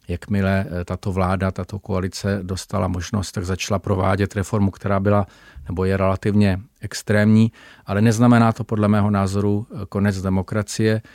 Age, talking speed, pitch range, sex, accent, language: 40-59, 135 wpm, 95-105 Hz, male, native, Czech